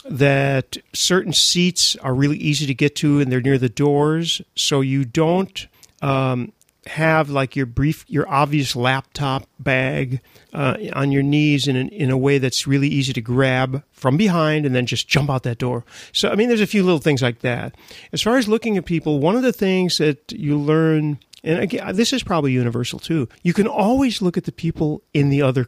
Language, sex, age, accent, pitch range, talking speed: English, male, 40-59, American, 130-165 Hz, 205 wpm